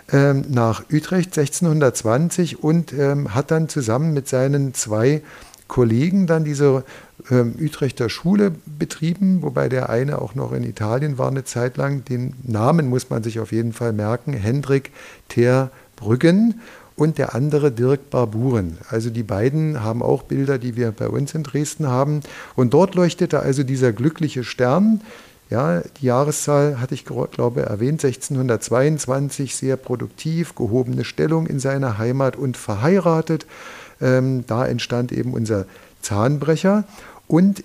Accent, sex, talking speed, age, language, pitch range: German, male, 145 wpm, 60-79, German, 125-155 Hz